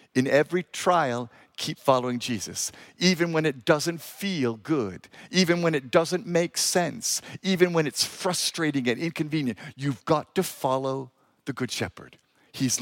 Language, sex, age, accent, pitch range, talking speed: English, male, 50-69, American, 140-190 Hz, 150 wpm